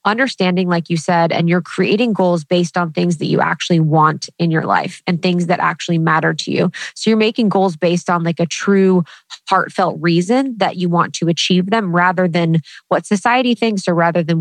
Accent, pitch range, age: American, 170-195 Hz, 20-39